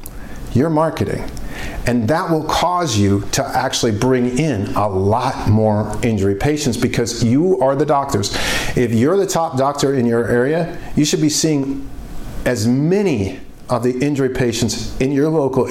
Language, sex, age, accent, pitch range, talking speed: English, male, 50-69, American, 115-150 Hz, 160 wpm